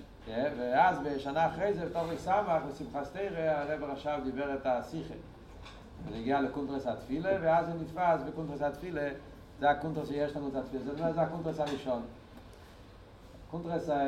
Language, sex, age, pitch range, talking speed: Hebrew, male, 40-59, 115-145 Hz, 130 wpm